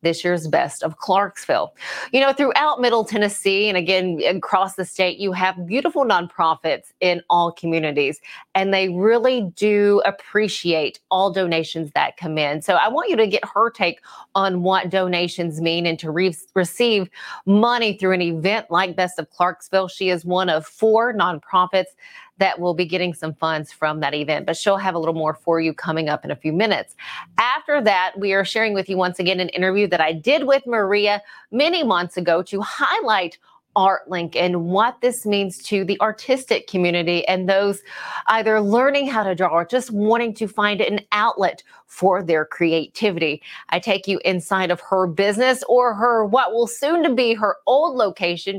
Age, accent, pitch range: 30-49, American, 175-210 Hz